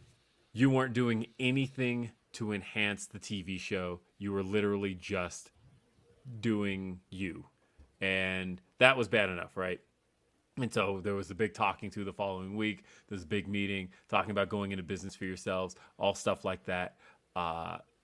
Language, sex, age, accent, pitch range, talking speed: English, male, 30-49, American, 95-115 Hz, 160 wpm